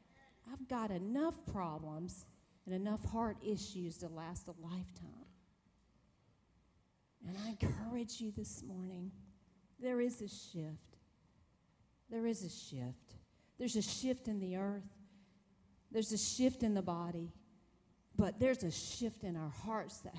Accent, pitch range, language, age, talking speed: American, 170-230 Hz, English, 40-59, 135 wpm